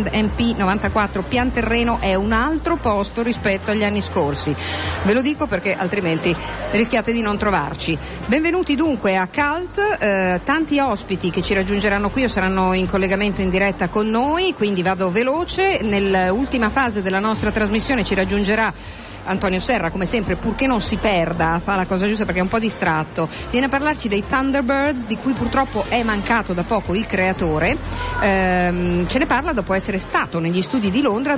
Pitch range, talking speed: 185-235 Hz, 170 wpm